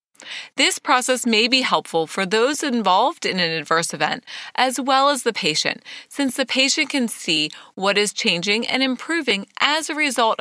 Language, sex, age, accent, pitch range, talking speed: English, female, 30-49, American, 190-265 Hz, 175 wpm